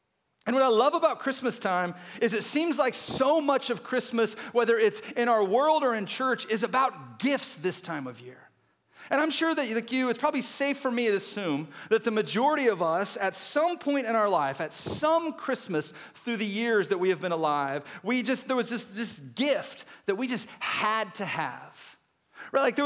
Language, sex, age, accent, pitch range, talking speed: English, male, 40-59, American, 190-250 Hz, 215 wpm